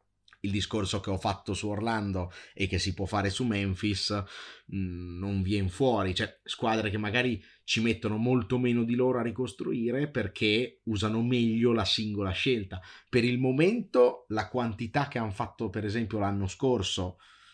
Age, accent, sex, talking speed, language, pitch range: 30-49, native, male, 160 wpm, Italian, 95-115 Hz